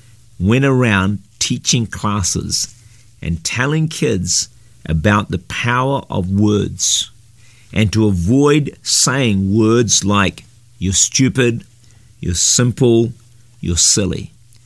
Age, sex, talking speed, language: 50-69, male, 100 wpm, English